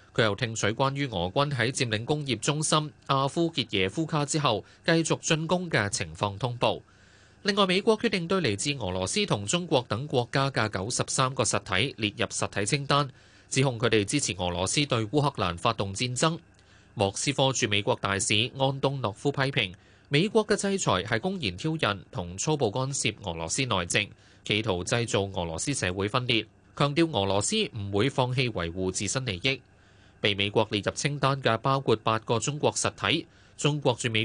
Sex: male